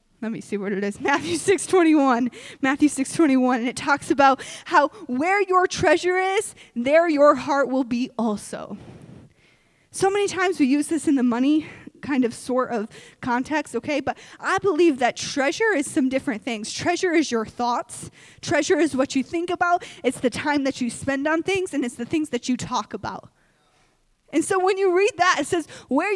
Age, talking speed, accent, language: 10-29, 195 wpm, American, English